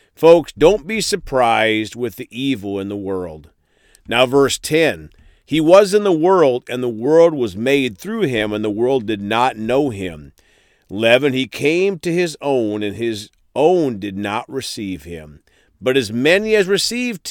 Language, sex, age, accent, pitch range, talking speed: English, male, 50-69, American, 105-150 Hz, 175 wpm